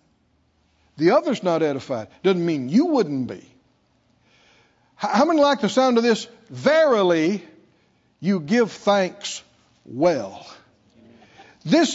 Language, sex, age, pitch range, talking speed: English, male, 60-79, 220-300 Hz, 110 wpm